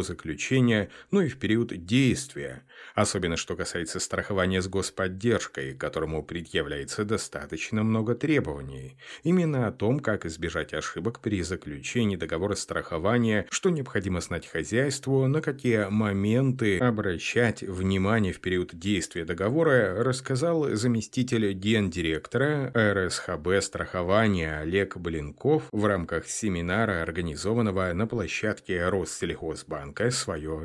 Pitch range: 90-120 Hz